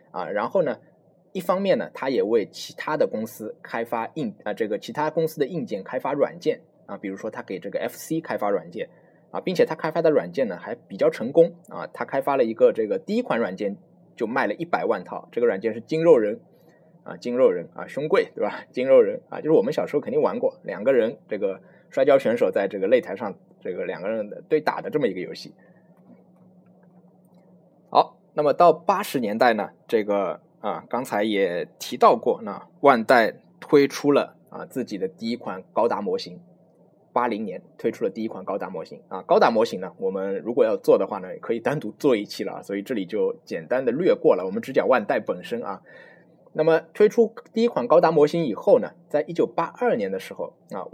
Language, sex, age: Chinese, male, 20-39